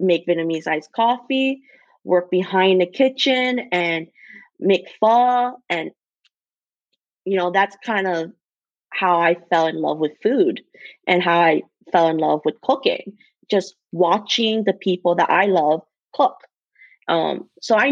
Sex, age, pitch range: female, 20-39, 170-220 Hz